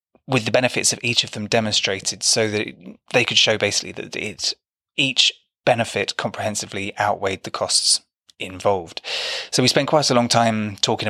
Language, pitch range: English, 100-115 Hz